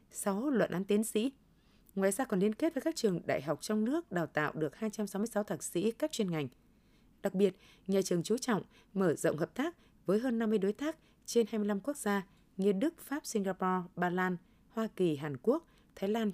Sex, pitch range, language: female, 175-230 Hz, Vietnamese